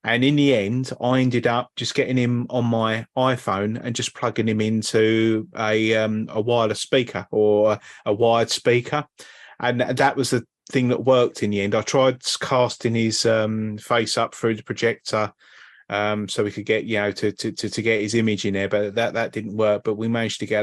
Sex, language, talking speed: male, English, 210 wpm